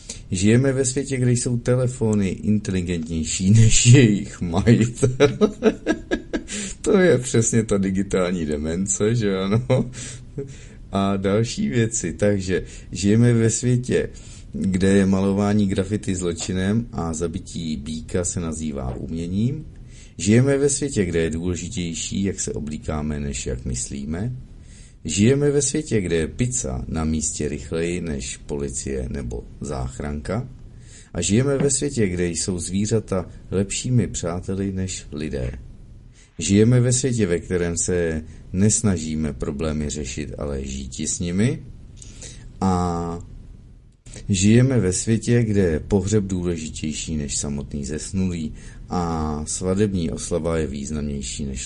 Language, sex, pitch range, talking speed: Czech, male, 80-115 Hz, 120 wpm